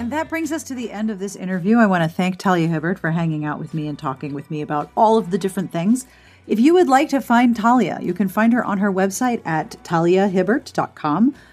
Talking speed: 245 wpm